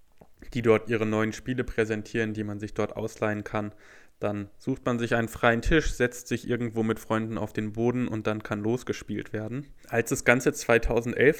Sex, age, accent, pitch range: male, 10-29, German, 110-125 Hz